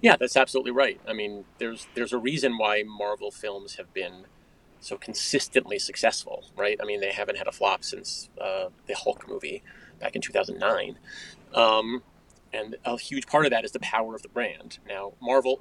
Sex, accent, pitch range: male, American, 110-145 Hz